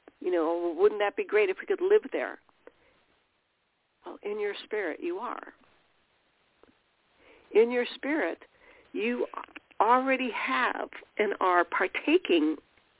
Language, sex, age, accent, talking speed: English, female, 60-79, American, 120 wpm